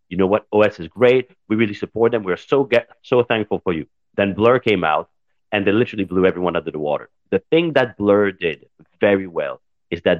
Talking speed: 225 wpm